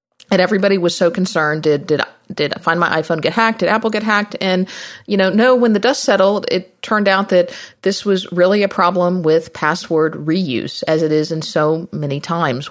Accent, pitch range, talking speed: American, 160-190 Hz, 215 wpm